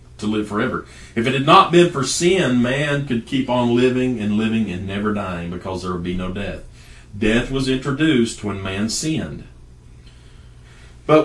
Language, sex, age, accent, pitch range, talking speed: English, male, 40-59, American, 100-130 Hz, 175 wpm